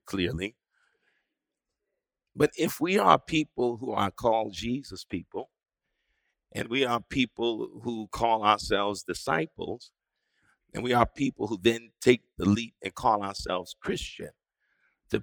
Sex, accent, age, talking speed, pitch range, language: male, American, 50-69, 130 wpm, 100-145 Hz, English